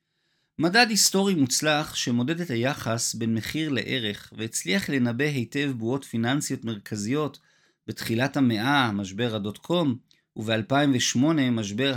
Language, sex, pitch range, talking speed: Hebrew, male, 120-165 Hz, 110 wpm